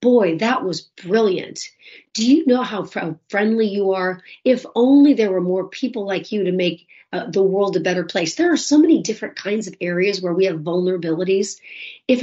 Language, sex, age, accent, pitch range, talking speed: English, female, 40-59, American, 175-225 Hz, 200 wpm